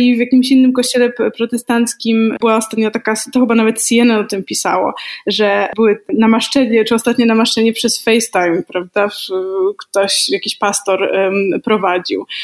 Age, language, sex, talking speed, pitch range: 20-39, Polish, female, 140 wpm, 215-245 Hz